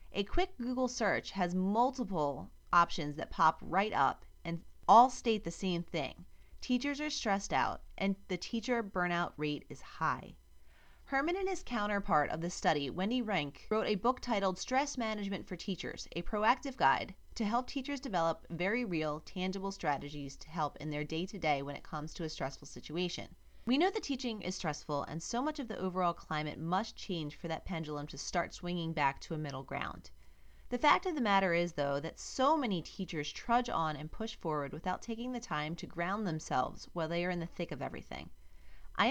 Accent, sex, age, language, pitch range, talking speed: American, female, 30-49, English, 155-225 Hz, 195 wpm